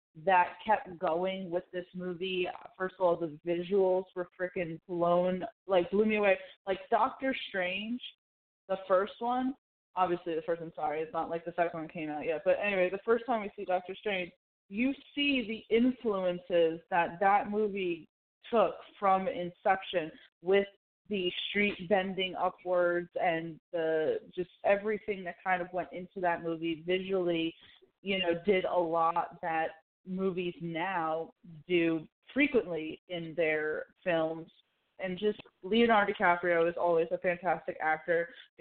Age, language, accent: 20-39, English, American